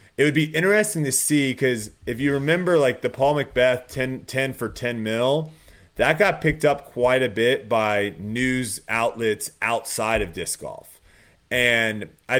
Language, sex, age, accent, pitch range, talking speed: English, male, 30-49, American, 100-130 Hz, 170 wpm